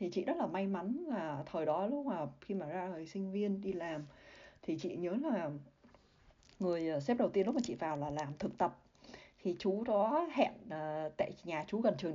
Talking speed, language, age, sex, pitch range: 220 wpm, Vietnamese, 20-39, female, 165-215 Hz